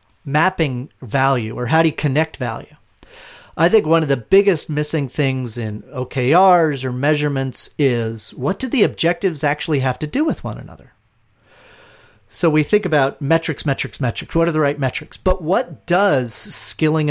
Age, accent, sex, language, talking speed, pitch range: 40-59, American, male, English, 170 wpm, 120-160 Hz